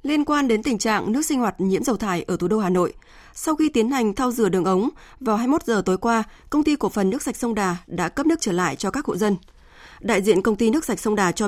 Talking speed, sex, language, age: 300 wpm, female, Vietnamese, 20-39